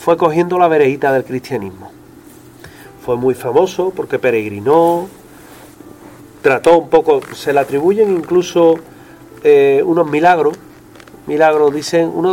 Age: 40-59